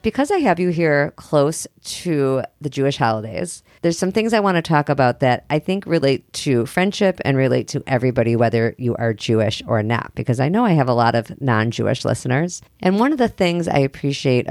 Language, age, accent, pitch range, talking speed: English, 40-59, American, 120-150 Hz, 210 wpm